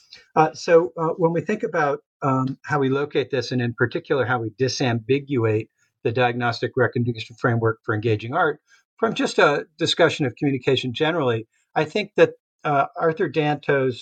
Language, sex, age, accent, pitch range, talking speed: English, male, 50-69, American, 115-150 Hz, 165 wpm